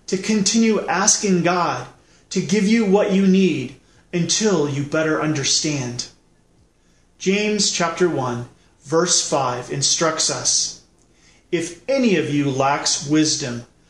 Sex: male